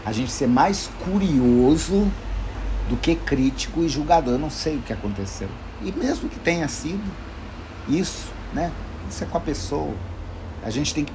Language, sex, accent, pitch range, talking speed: Portuguese, male, Brazilian, 100-145 Hz, 170 wpm